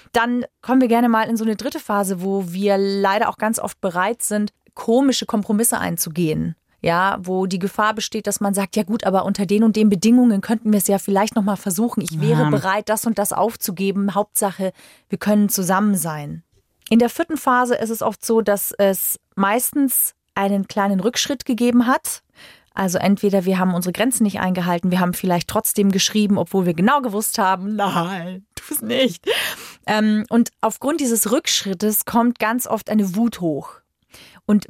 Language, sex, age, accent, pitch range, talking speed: German, female, 30-49, German, 195-235 Hz, 180 wpm